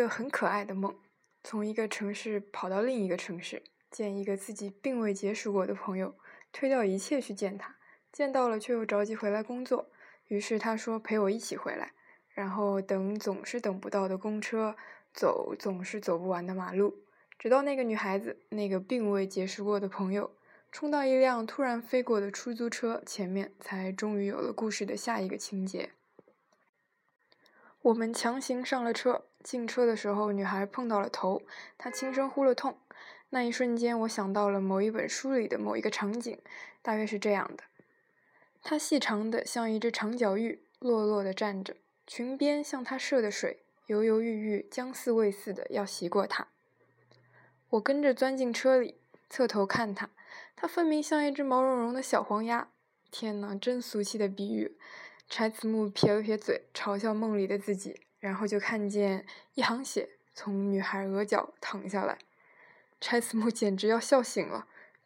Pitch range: 200-250 Hz